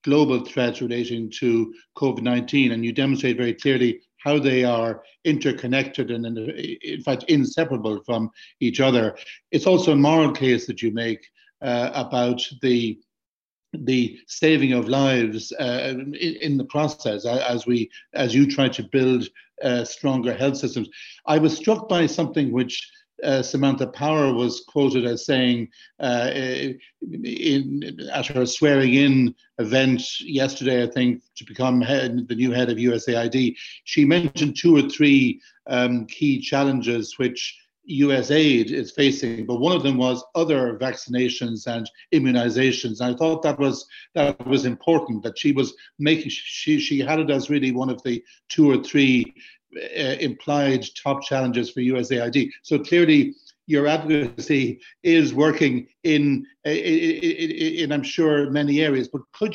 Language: English